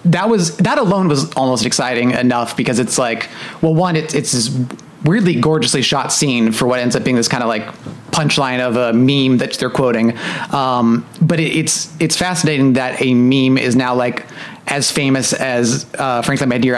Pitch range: 120-155 Hz